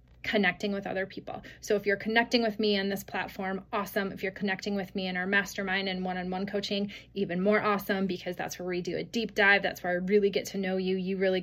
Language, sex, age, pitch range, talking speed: English, female, 20-39, 190-220 Hz, 240 wpm